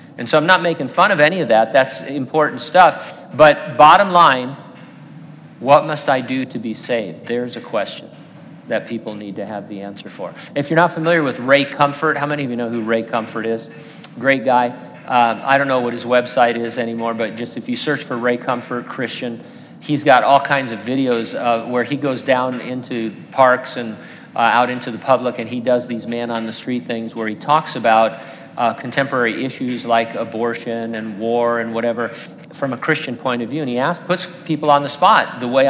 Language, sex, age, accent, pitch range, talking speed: English, male, 50-69, American, 120-145 Hz, 210 wpm